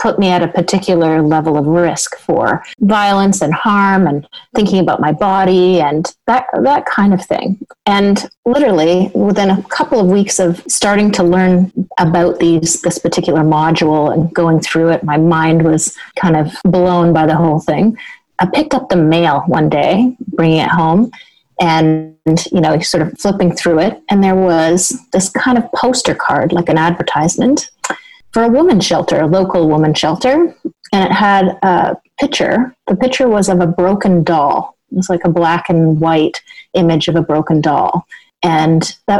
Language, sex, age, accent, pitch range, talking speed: English, female, 30-49, American, 165-205 Hz, 180 wpm